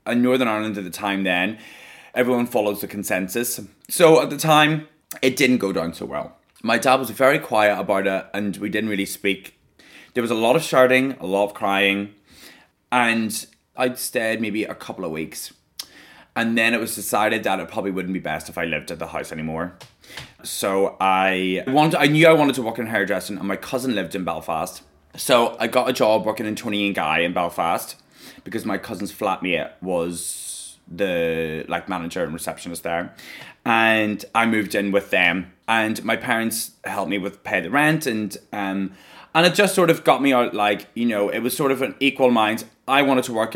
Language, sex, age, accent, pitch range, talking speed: English, male, 20-39, British, 100-130 Hz, 205 wpm